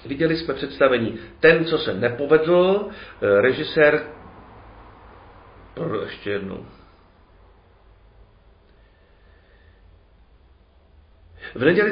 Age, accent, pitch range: 50-69, native, 100-145 Hz